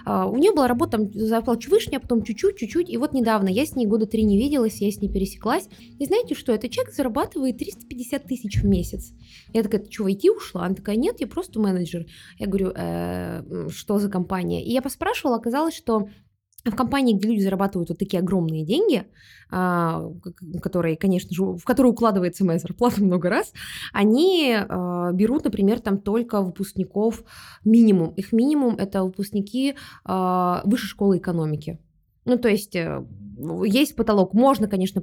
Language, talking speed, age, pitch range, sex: Russian, 240 wpm, 20-39, 185-240 Hz, female